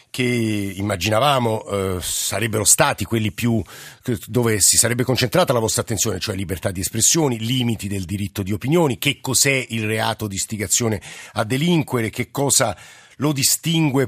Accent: native